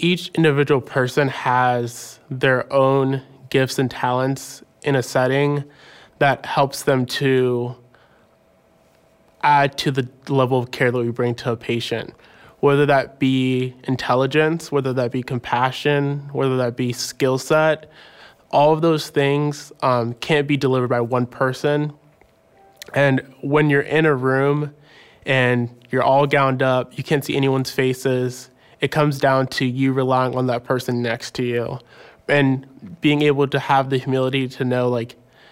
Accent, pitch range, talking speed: American, 125-140 Hz, 150 wpm